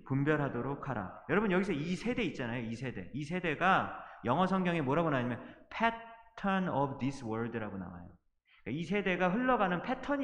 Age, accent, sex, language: 30-49, native, male, Korean